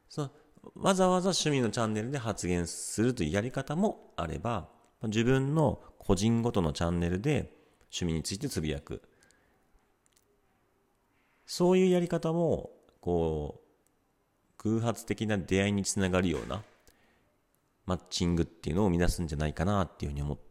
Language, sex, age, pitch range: Japanese, male, 40-59, 80-120 Hz